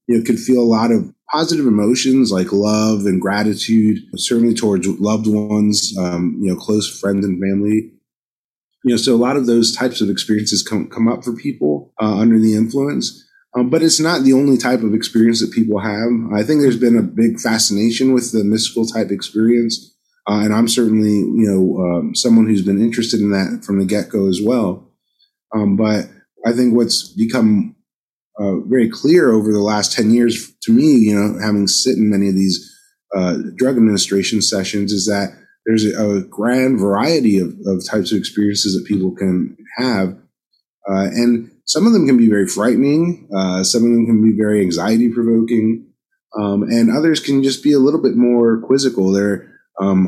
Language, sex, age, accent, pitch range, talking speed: English, male, 30-49, American, 100-120 Hz, 190 wpm